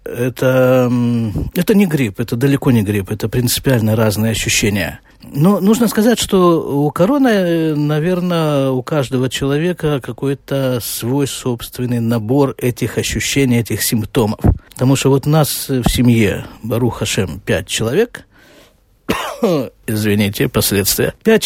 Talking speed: 125 wpm